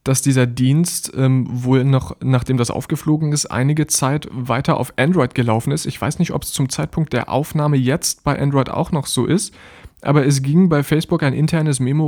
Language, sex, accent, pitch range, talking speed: German, male, German, 120-145 Hz, 205 wpm